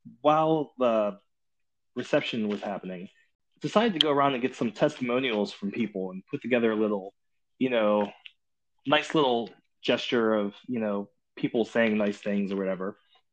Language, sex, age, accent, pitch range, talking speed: English, male, 20-39, American, 105-145 Hz, 155 wpm